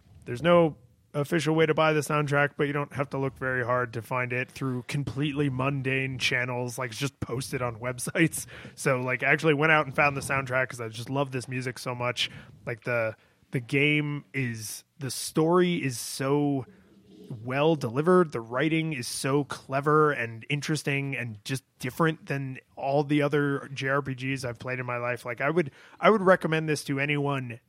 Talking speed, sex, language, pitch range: 190 wpm, male, English, 125-155 Hz